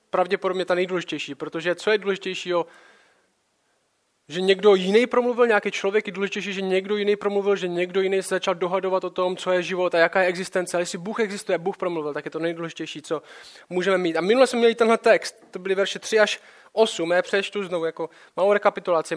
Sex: male